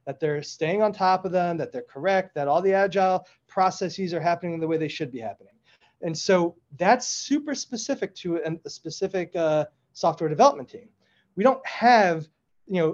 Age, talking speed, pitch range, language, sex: 30-49, 185 wpm, 155-200 Hz, English, male